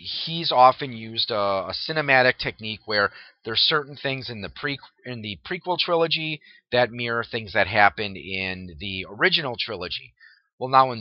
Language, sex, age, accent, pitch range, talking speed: English, male, 30-49, American, 110-140 Hz, 160 wpm